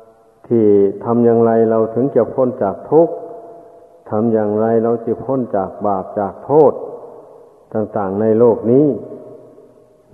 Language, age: Thai, 60-79